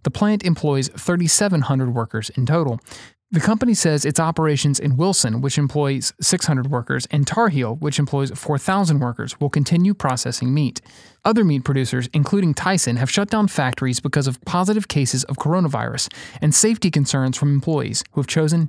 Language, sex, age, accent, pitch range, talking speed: English, male, 30-49, American, 130-170 Hz, 165 wpm